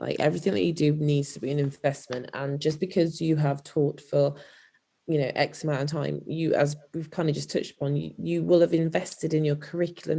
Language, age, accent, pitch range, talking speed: English, 20-39, British, 150-175 Hz, 230 wpm